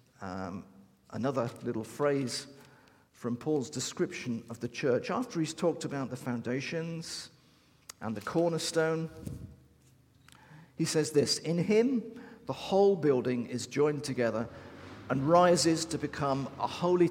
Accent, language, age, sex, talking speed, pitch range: British, English, 50-69, male, 125 wpm, 110-150 Hz